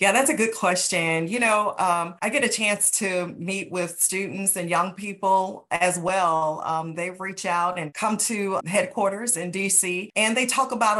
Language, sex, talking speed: English, female, 190 wpm